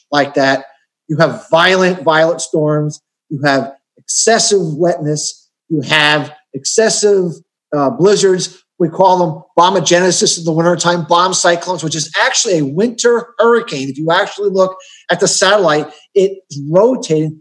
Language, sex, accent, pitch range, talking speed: English, male, American, 160-200 Hz, 140 wpm